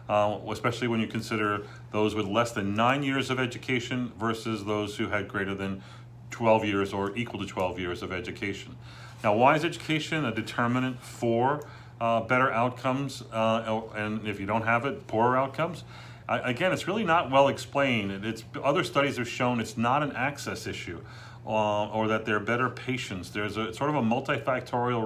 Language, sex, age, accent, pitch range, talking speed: English, male, 40-59, American, 110-125 Hz, 180 wpm